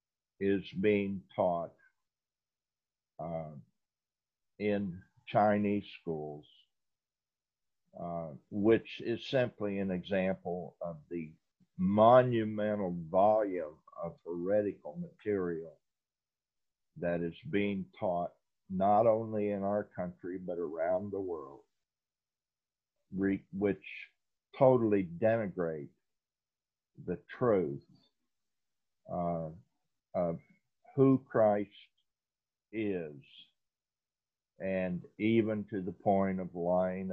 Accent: American